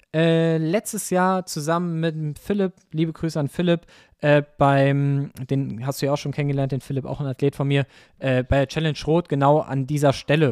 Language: German